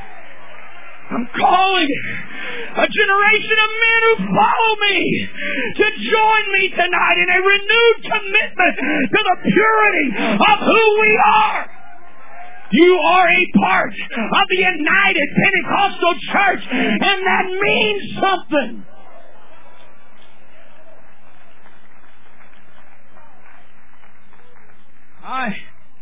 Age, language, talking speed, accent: 50-69, English, 90 wpm, American